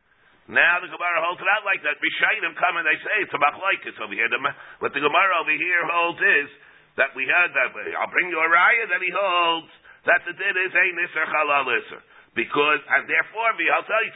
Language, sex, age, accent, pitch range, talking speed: English, male, 50-69, American, 160-200 Hz, 215 wpm